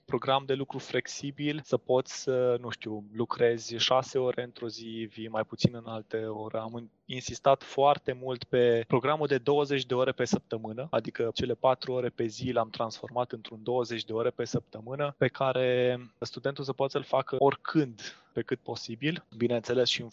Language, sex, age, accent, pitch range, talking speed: Romanian, male, 20-39, native, 115-140 Hz, 175 wpm